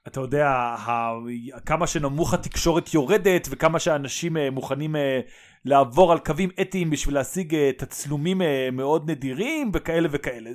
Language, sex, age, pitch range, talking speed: Hebrew, male, 30-49, 130-175 Hz, 115 wpm